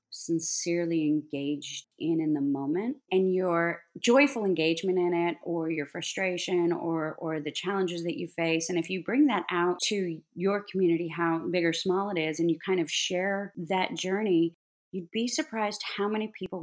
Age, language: 30-49, English